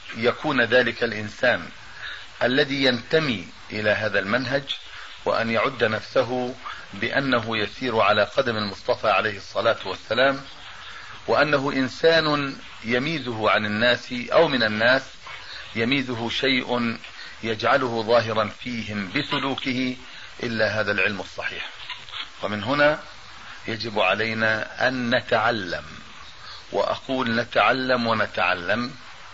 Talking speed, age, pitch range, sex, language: 95 wpm, 40-59, 110-130 Hz, male, Arabic